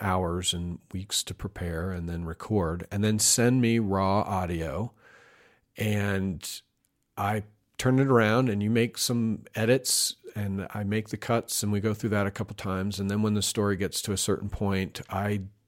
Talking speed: 185 wpm